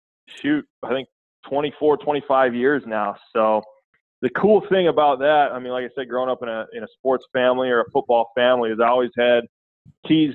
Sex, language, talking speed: male, English, 215 wpm